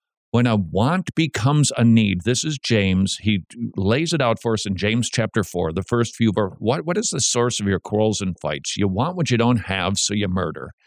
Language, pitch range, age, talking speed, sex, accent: English, 110-145 Hz, 50-69, 225 wpm, male, American